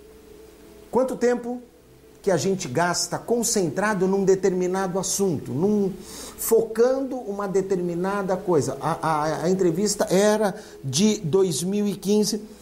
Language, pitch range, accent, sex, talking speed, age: Portuguese, 160-210 Hz, Brazilian, male, 100 wpm, 50-69